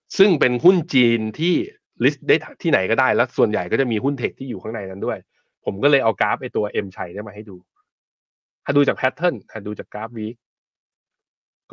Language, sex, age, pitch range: Thai, male, 20-39, 110-145 Hz